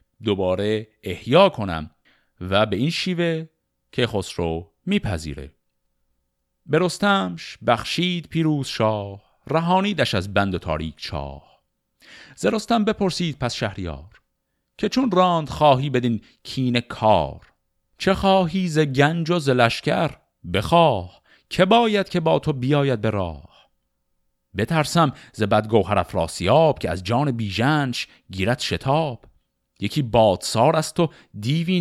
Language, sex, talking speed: Persian, male, 120 wpm